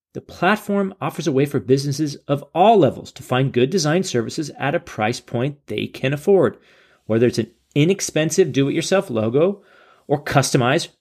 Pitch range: 130-190 Hz